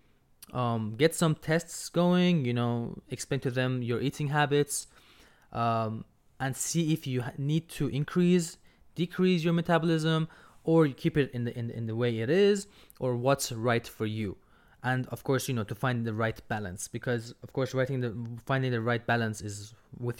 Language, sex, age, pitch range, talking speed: English, male, 20-39, 115-140 Hz, 185 wpm